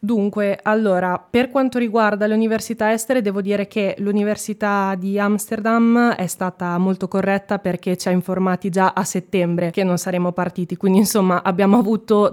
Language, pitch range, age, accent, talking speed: Italian, 180-205 Hz, 20-39, native, 160 wpm